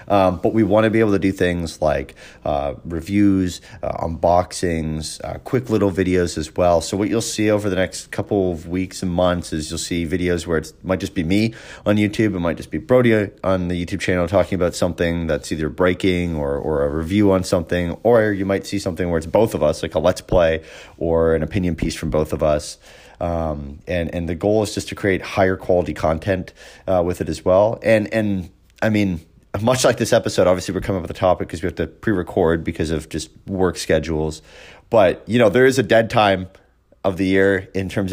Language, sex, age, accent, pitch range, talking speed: English, male, 30-49, American, 85-100 Hz, 225 wpm